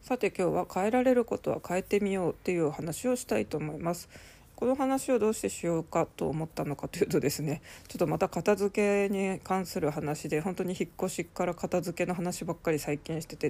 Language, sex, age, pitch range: Japanese, female, 20-39, 155-200 Hz